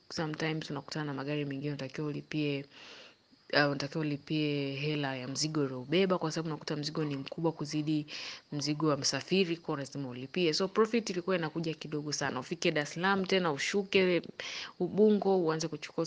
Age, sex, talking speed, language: 20-39, female, 145 wpm, Swahili